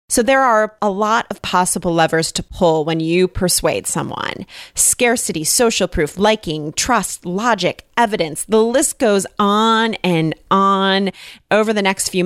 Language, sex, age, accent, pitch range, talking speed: English, female, 30-49, American, 175-235 Hz, 150 wpm